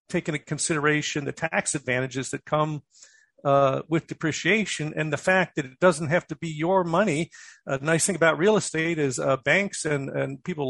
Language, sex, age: English, male, 50-69